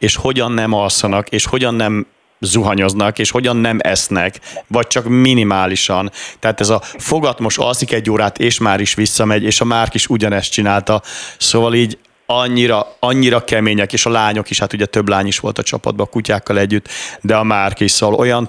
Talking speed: 190 wpm